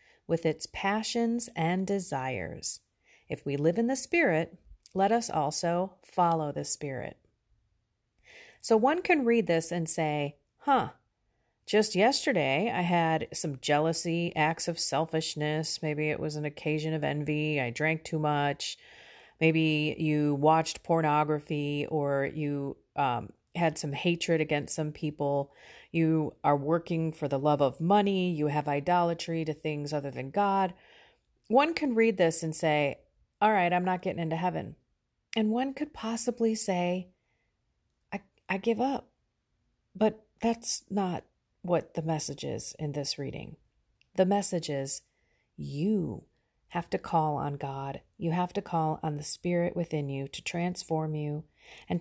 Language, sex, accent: English, female, American